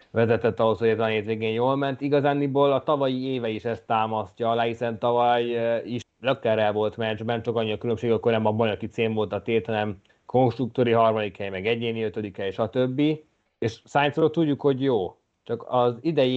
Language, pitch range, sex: Hungarian, 110-130 Hz, male